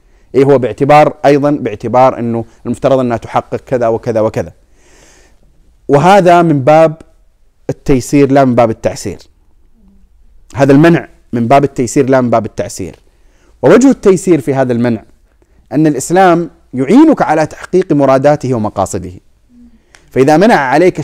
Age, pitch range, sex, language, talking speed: 30-49, 110-145 Hz, male, Arabic, 125 wpm